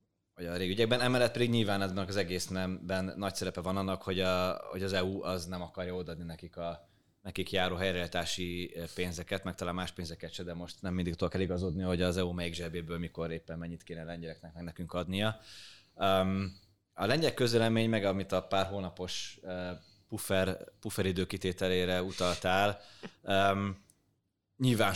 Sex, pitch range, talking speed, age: male, 85-95 Hz, 150 wpm, 20-39